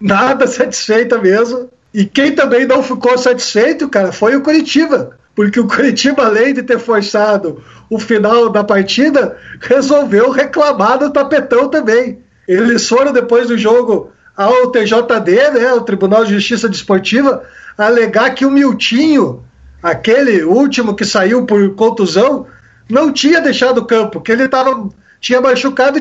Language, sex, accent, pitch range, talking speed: Portuguese, male, Brazilian, 225-275 Hz, 145 wpm